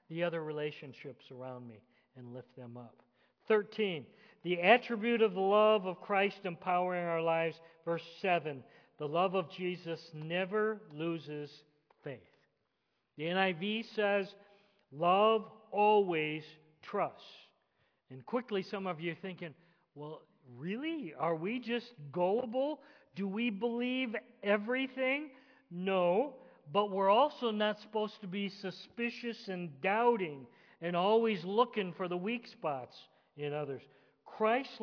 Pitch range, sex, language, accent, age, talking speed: 165-225 Hz, male, English, American, 50-69, 125 wpm